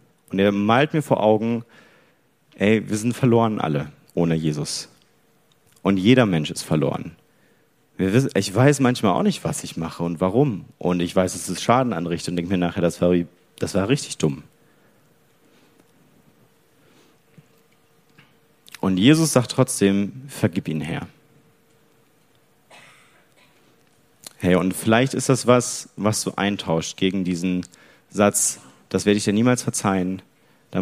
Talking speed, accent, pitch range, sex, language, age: 135 wpm, German, 90-130 Hz, male, German, 40-59